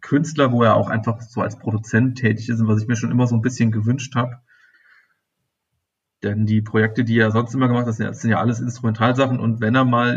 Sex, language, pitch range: male, German, 115-135 Hz